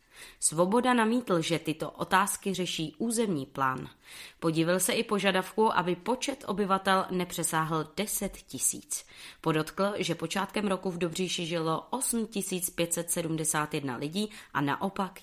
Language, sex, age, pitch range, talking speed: Czech, female, 20-39, 150-195 Hz, 115 wpm